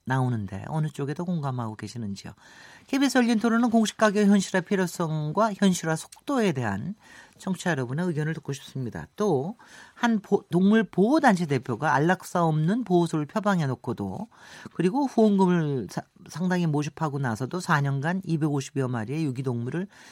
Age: 40-59